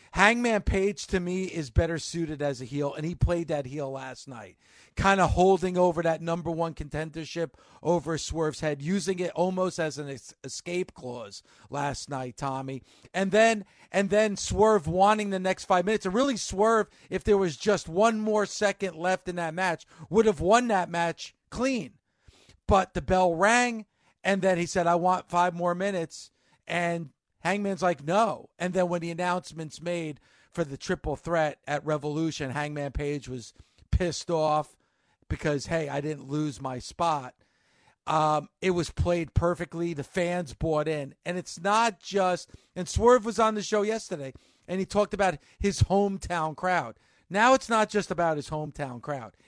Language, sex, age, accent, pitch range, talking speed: English, male, 50-69, American, 150-190 Hz, 175 wpm